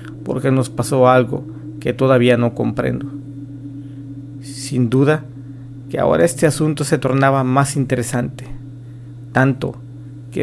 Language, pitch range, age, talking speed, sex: Spanish, 120-135 Hz, 40-59, 115 wpm, male